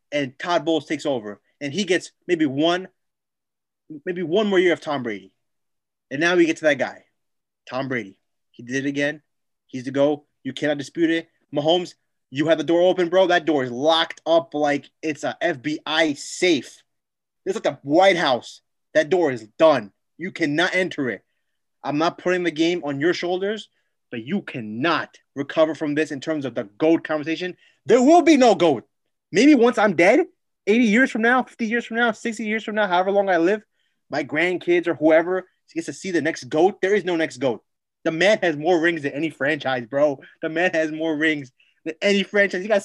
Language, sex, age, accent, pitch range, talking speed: English, male, 30-49, American, 160-225 Hz, 205 wpm